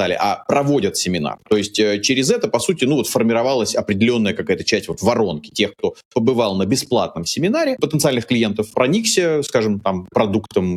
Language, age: Russian, 30-49